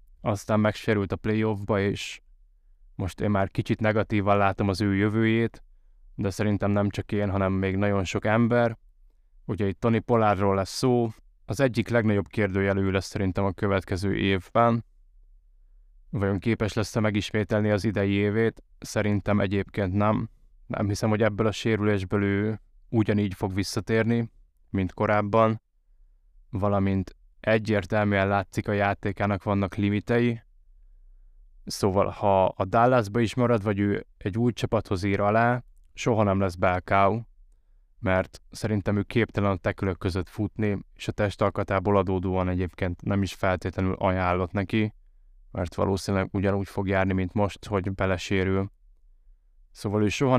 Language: Hungarian